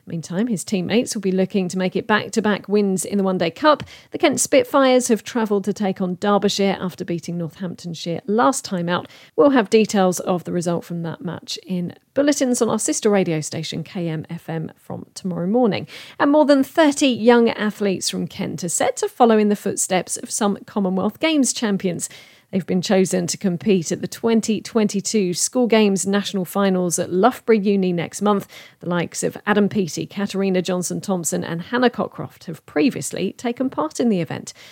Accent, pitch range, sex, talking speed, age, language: British, 180-225 Hz, female, 180 wpm, 40-59, English